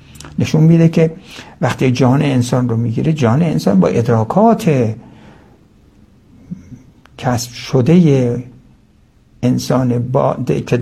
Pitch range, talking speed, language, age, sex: 115-160 Hz, 95 wpm, Persian, 60-79, male